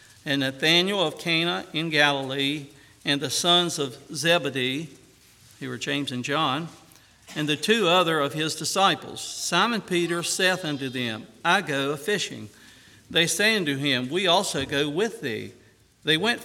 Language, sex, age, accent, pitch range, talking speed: English, male, 60-79, American, 145-185 Hz, 155 wpm